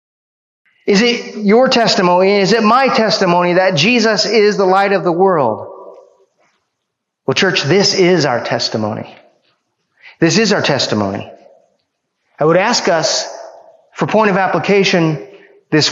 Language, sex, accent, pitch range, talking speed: English, male, American, 150-205 Hz, 130 wpm